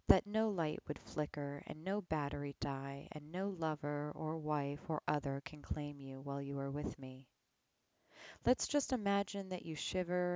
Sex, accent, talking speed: female, American, 175 wpm